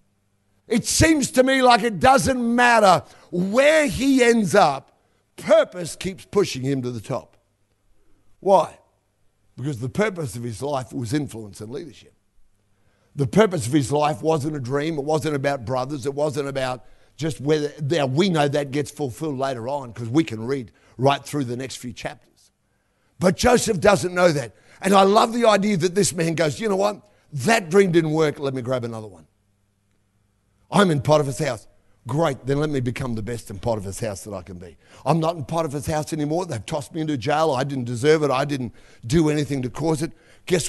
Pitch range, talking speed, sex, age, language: 120-170 Hz, 195 wpm, male, 50-69, English